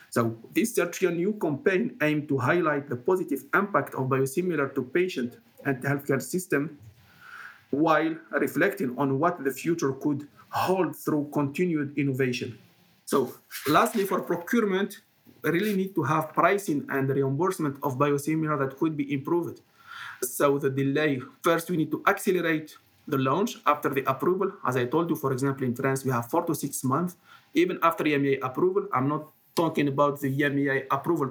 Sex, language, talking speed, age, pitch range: male, English, 160 wpm, 50-69, 135-165 Hz